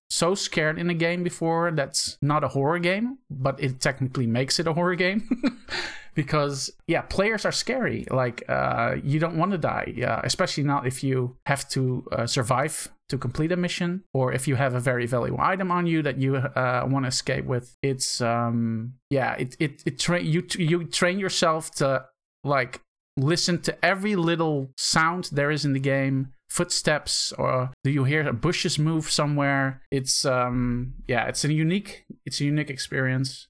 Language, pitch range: English, 130-170 Hz